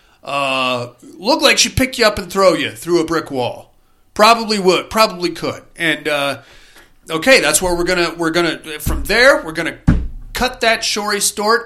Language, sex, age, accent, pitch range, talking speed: English, male, 40-59, American, 165-225 Hz, 180 wpm